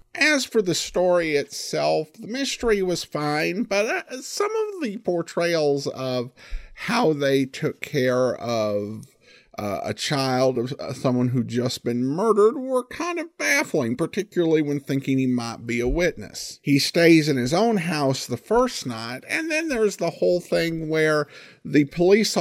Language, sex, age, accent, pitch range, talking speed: English, male, 50-69, American, 130-175 Hz, 160 wpm